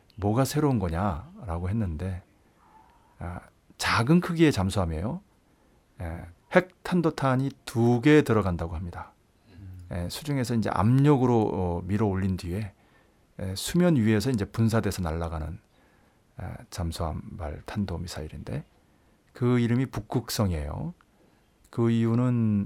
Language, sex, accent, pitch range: Korean, male, native, 90-120 Hz